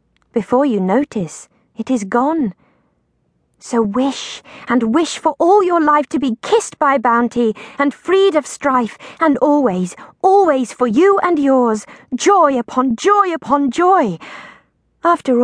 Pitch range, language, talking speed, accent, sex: 225-300 Hz, English, 140 wpm, British, female